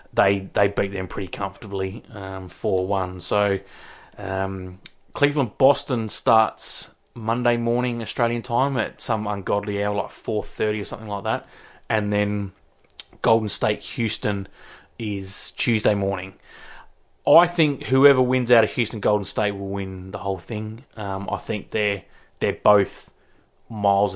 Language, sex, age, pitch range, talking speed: English, male, 20-39, 100-115 Hz, 130 wpm